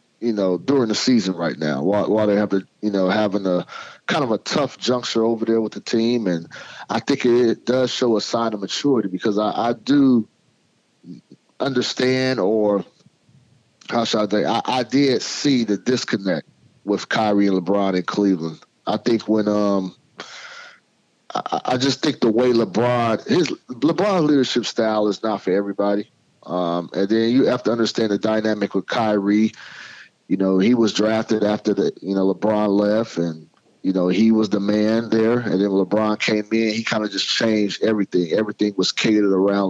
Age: 30-49